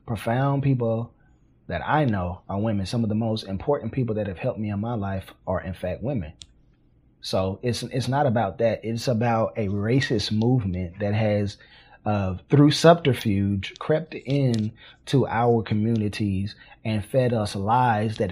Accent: American